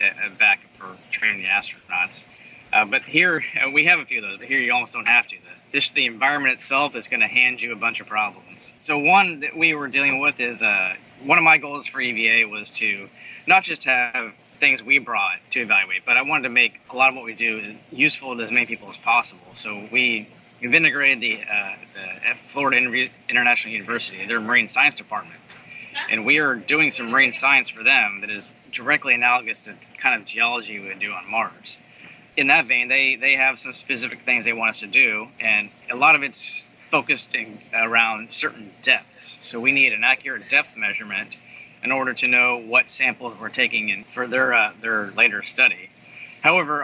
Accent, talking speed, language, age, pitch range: American, 210 wpm, English, 20-39, 115-135 Hz